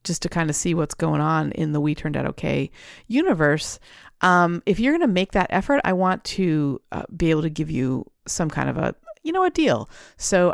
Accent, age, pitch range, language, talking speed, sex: American, 40-59, 150-190 Hz, English, 235 wpm, female